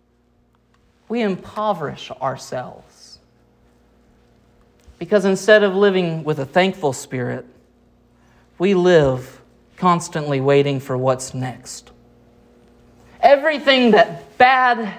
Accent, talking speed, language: American, 85 wpm, English